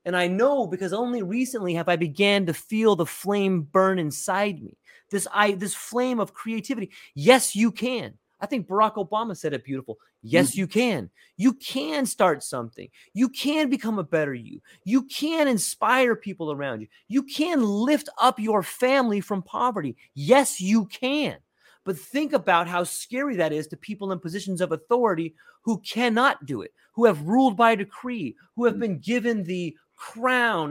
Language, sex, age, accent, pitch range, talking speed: English, male, 30-49, American, 175-245 Hz, 175 wpm